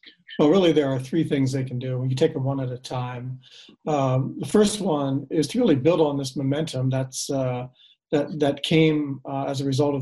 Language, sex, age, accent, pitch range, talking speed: English, male, 40-59, American, 130-150 Hz, 230 wpm